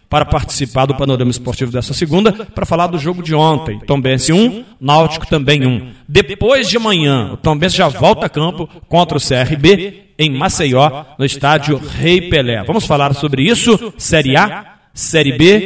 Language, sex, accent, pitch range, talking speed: Portuguese, male, Brazilian, 135-170 Hz, 170 wpm